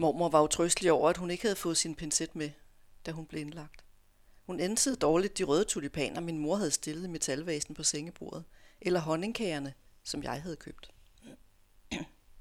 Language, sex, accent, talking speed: English, female, Danish, 170 wpm